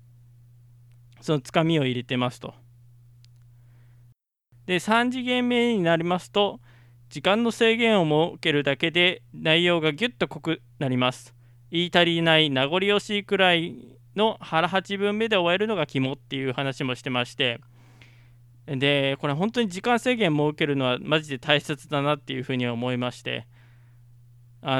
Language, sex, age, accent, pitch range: Japanese, male, 20-39, native, 120-175 Hz